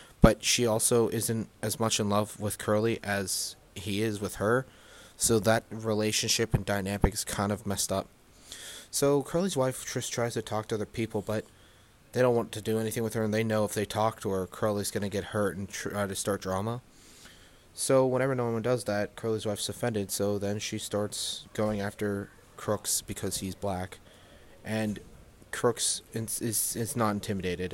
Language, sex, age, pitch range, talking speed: English, male, 20-39, 100-115 Hz, 190 wpm